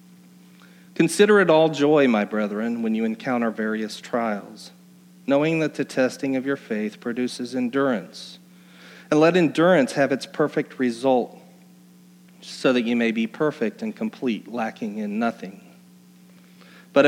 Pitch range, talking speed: 130-180 Hz, 135 wpm